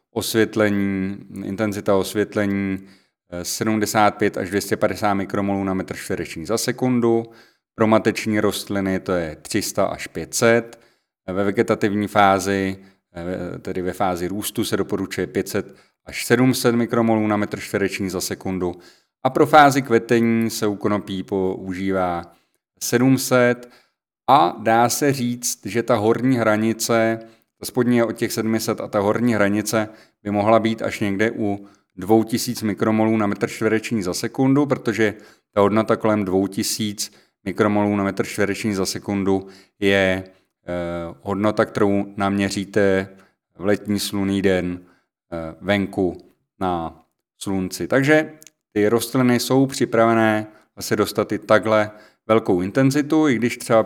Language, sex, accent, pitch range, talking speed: Czech, male, native, 100-115 Hz, 125 wpm